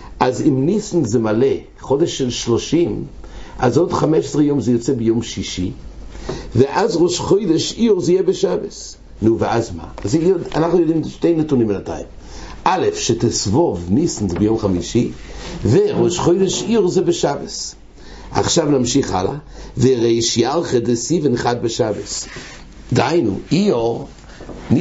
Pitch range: 115-175 Hz